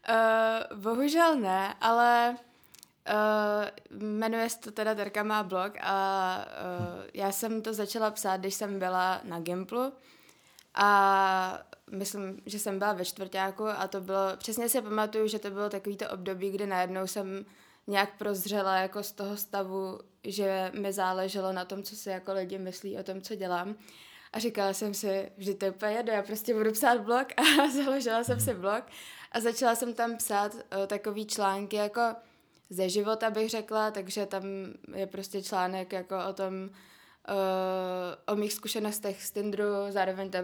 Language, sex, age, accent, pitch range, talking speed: Czech, female, 20-39, native, 190-215 Hz, 165 wpm